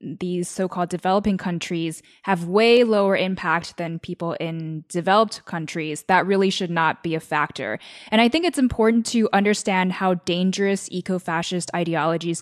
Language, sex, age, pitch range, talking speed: English, female, 10-29, 170-205 Hz, 150 wpm